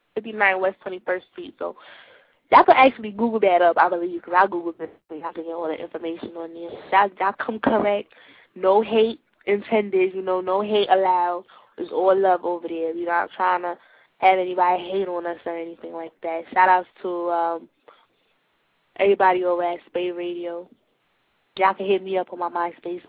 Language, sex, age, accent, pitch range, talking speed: English, female, 10-29, American, 175-225 Hz, 190 wpm